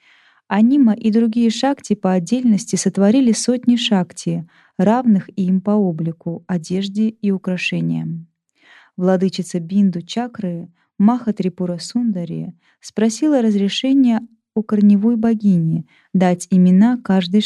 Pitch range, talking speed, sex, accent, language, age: 175-225 Hz, 100 wpm, female, native, Russian, 20-39